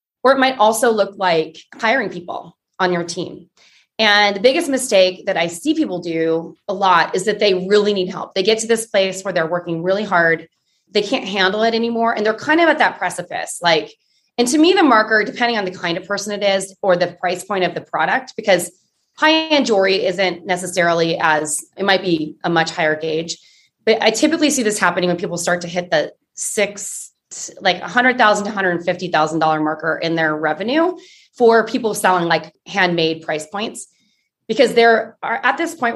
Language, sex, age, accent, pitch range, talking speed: English, female, 20-39, American, 170-225 Hz, 195 wpm